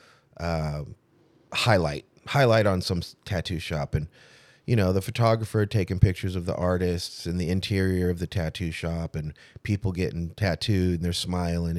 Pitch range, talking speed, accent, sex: 90-120 Hz, 170 wpm, American, male